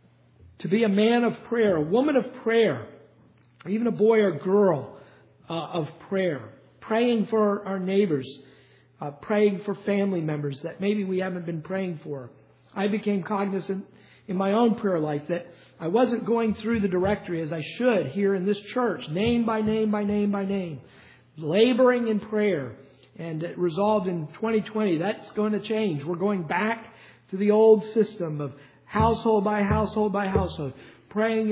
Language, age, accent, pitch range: English, 50-69, American, 160-210 Hz